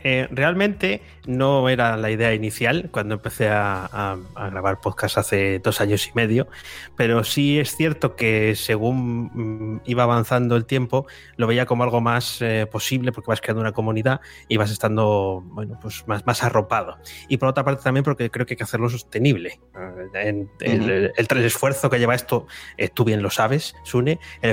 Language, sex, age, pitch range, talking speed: Spanish, male, 20-39, 105-125 Hz, 190 wpm